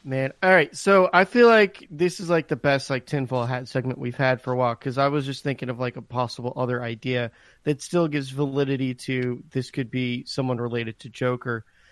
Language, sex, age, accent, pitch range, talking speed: English, male, 30-49, American, 135-165 Hz, 220 wpm